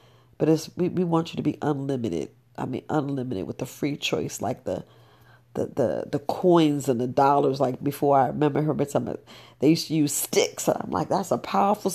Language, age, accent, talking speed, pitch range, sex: English, 40-59, American, 210 wpm, 135-170 Hz, female